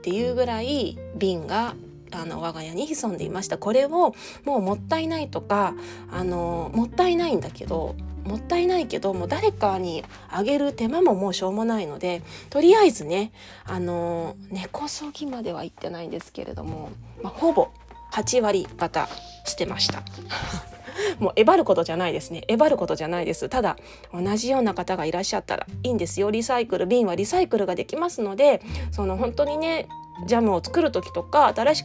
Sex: female